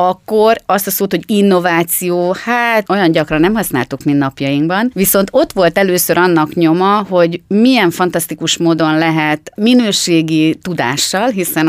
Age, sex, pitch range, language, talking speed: 30-49, female, 155-190 Hz, Hungarian, 140 wpm